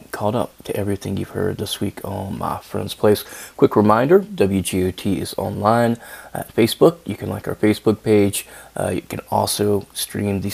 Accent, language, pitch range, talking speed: American, English, 95-110 Hz, 175 wpm